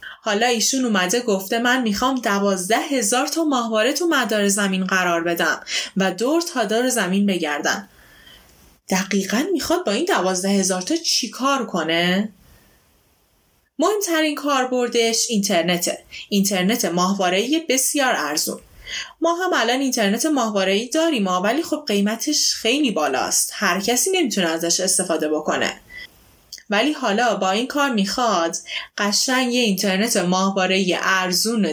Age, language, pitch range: 20-39, Persian, 190-255 Hz